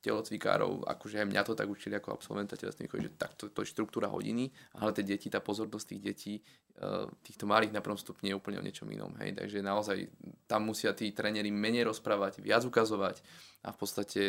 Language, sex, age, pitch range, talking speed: Slovak, male, 20-39, 100-115 Hz, 190 wpm